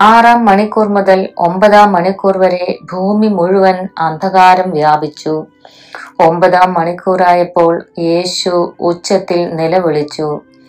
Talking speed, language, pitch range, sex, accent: 85 wpm, Malayalam, 170-200 Hz, female, native